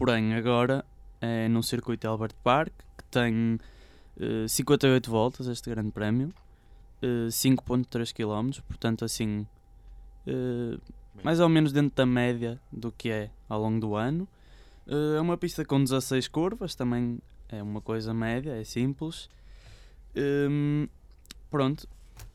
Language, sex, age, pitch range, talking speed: Portuguese, male, 20-39, 110-135 Hz, 135 wpm